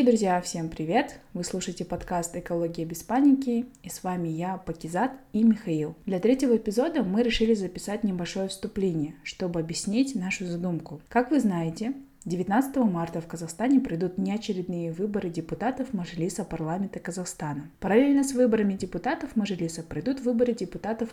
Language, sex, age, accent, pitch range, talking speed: Russian, female, 20-39, native, 170-220 Hz, 145 wpm